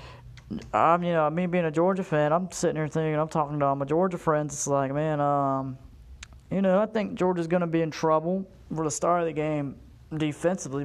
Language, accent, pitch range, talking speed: English, American, 145-170 Hz, 215 wpm